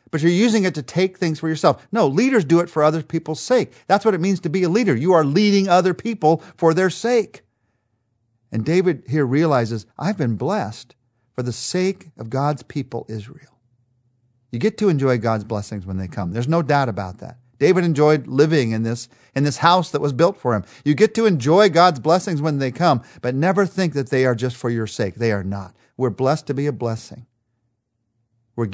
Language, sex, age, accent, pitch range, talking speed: English, male, 50-69, American, 115-160 Hz, 210 wpm